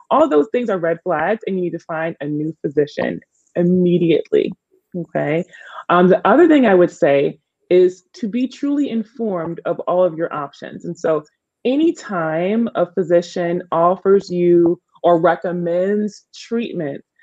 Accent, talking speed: American, 155 wpm